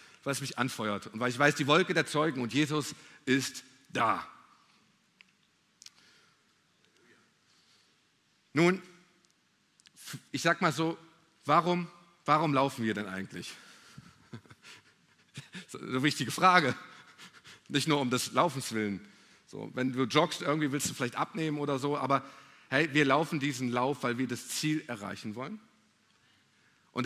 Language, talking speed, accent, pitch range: German, 135 wpm, German, 125-165 Hz